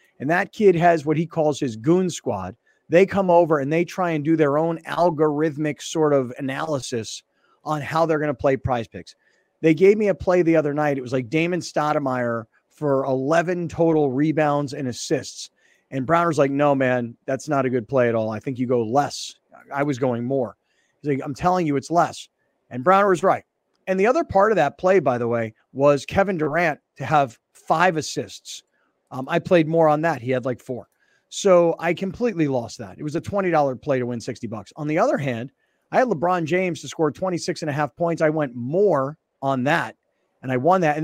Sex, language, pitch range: male, English, 130-170 Hz